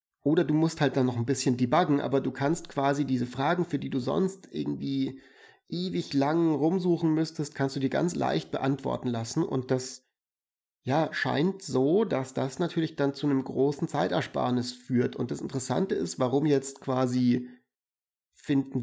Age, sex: 30-49, male